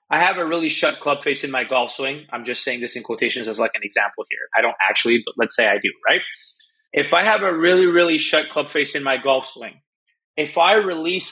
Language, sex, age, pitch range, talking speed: English, male, 20-39, 130-170 Hz, 250 wpm